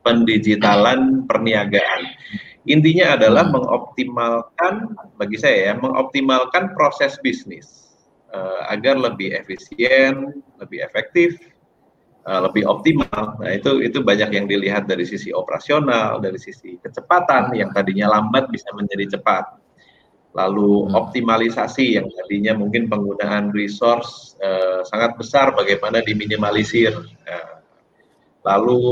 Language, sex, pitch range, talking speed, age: Malay, male, 100-135 Hz, 110 wpm, 30-49